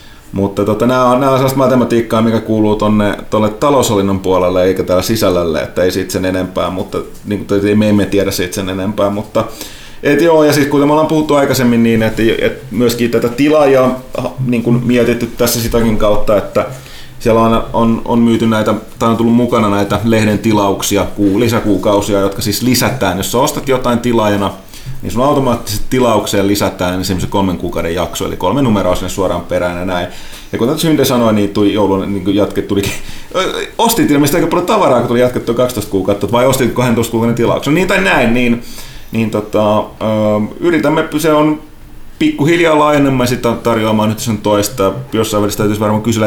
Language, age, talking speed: Finnish, 30-49, 170 wpm